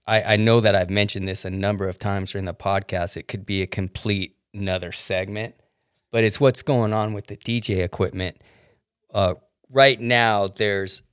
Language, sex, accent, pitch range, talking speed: English, male, American, 95-110 Hz, 185 wpm